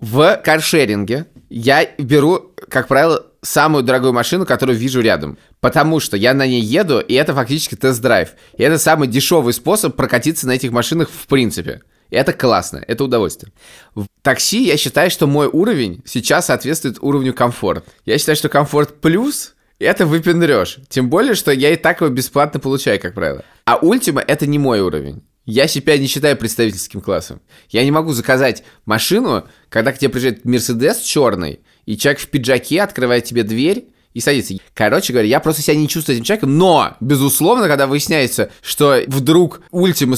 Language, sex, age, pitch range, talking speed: Russian, male, 20-39, 115-150 Hz, 170 wpm